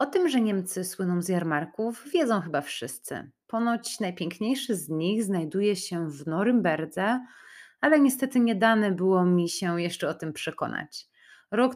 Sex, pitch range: female, 175-220 Hz